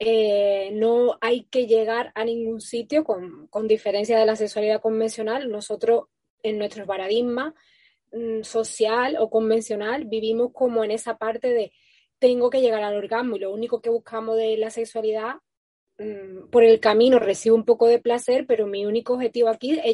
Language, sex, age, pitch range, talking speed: Spanish, female, 20-39, 215-240 Hz, 170 wpm